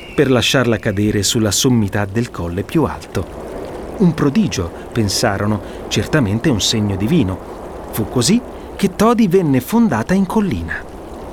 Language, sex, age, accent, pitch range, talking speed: Italian, male, 30-49, native, 110-175 Hz, 125 wpm